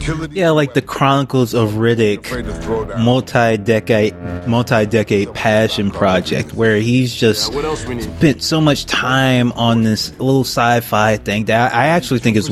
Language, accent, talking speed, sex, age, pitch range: English, American, 130 wpm, male, 20-39, 105-125 Hz